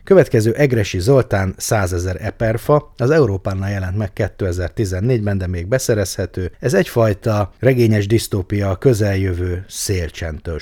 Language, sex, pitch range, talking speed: Hungarian, male, 85-110 Hz, 115 wpm